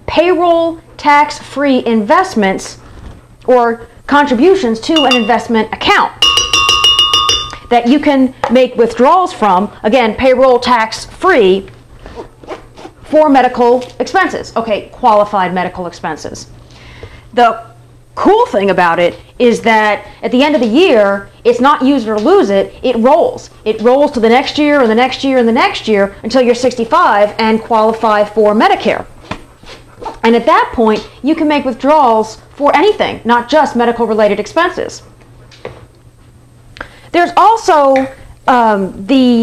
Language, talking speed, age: English, 135 wpm, 40-59